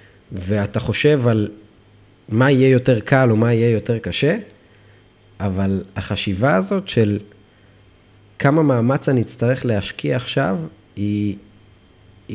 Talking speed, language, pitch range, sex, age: 110 wpm, Hebrew, 100-130 Hz, male, 30-49